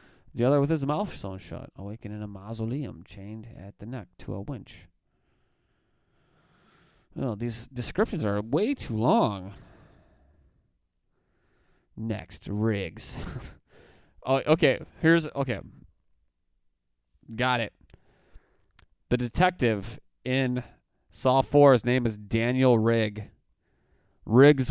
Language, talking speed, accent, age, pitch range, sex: English, 105 wpm, American, 20-39, 100-135 Hz, male